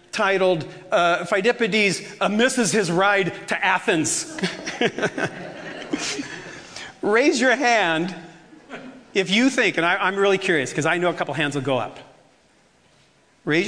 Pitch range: 170-265 Hz